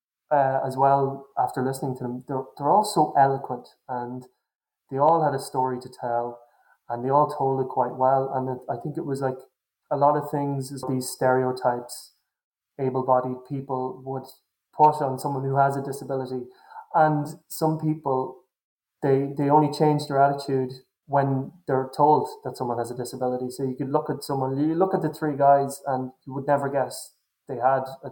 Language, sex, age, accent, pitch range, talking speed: English, male, 20-39, Irish, 130-145 Hz, 185 wpm